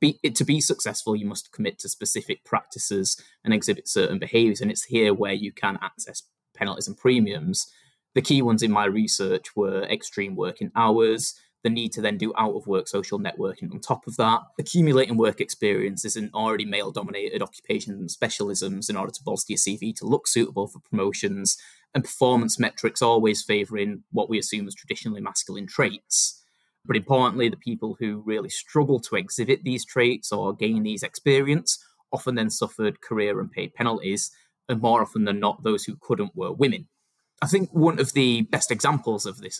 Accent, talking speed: British, 185 wpm